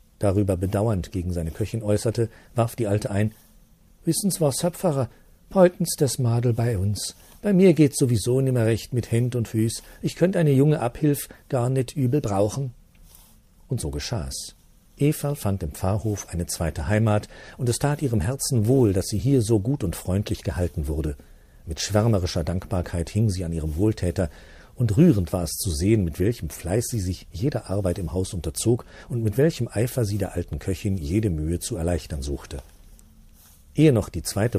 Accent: German